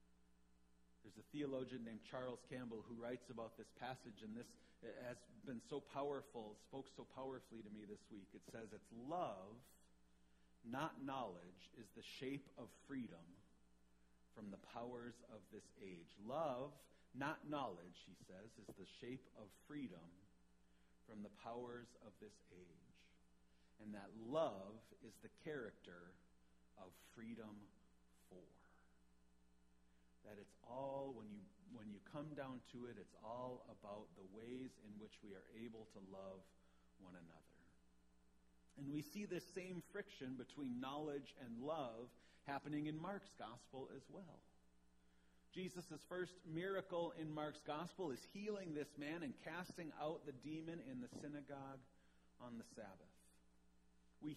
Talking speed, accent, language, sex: 140 wpm, American, English, male